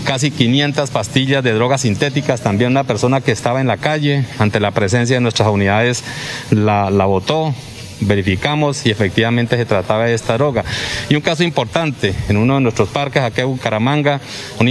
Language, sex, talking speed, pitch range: Spanish, male, 185 wpm, 110-135 Hz